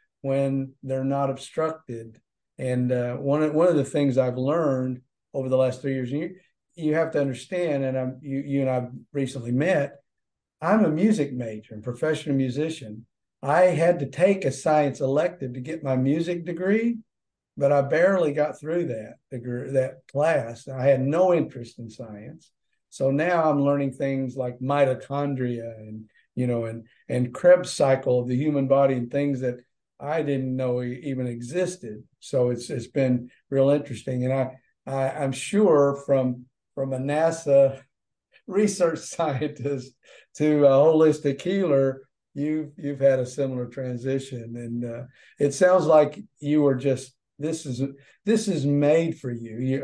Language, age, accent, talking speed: English, 50-69, American, 165 wpm